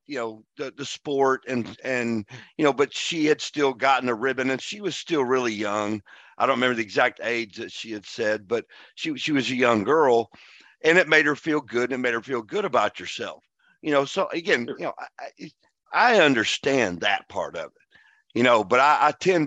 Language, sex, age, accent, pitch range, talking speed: English, male, 50-69, American, 115-140 Hz, 225 wpm